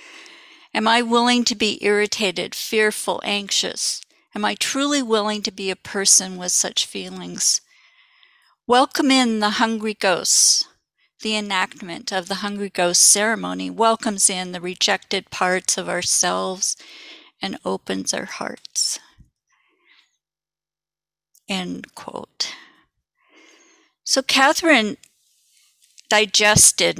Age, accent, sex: 50-69, American, female